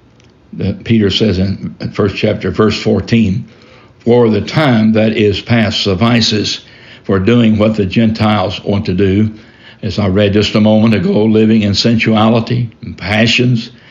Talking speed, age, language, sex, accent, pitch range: 150 wpm, 60-79, English, male, American, 100-120 Hz